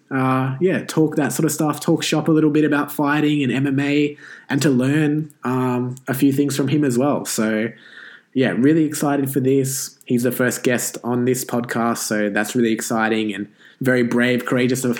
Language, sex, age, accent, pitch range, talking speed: English, male, 20-39, Australian, 115-145 Hz, 195 wpm